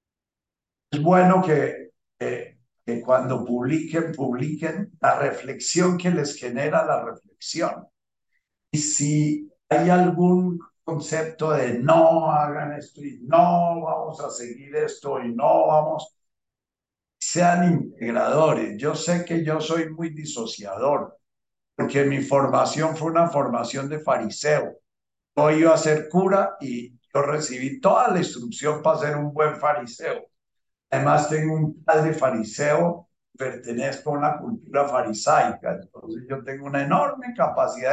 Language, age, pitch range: Spanish, 60-79, 135-165 Hz